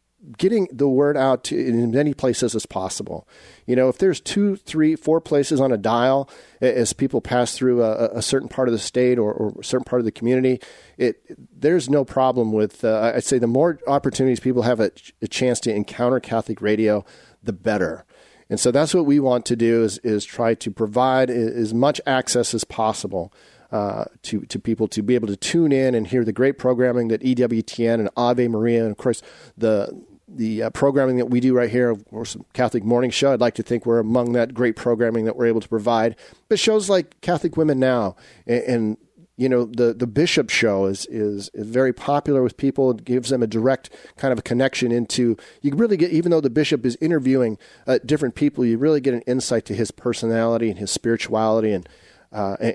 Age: 40-59